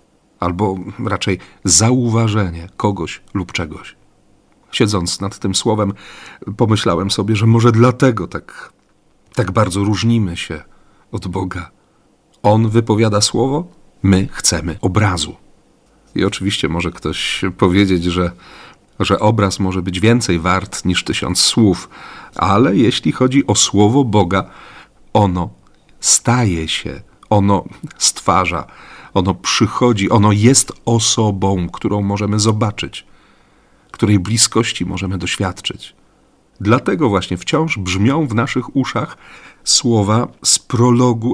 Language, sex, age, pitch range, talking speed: Polish, male, 40-59, 95-115 Hz, 110 wpm